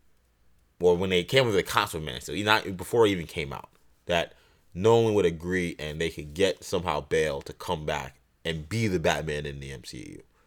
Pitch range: 80-100 Hz